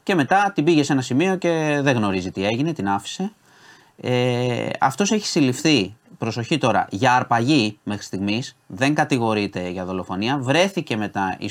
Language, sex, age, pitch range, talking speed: Greek, male, 30-49, 105-150 Hz, 160 wpm